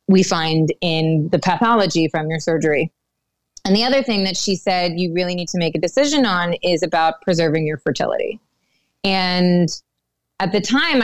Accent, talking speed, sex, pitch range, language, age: American, 175 wpm, female, 160-200 Hz, English, 20-39